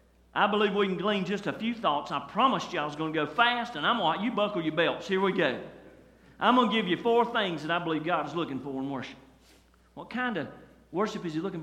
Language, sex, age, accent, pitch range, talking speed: English, male, 40-59, American, 115-165 Hz, 270 wpm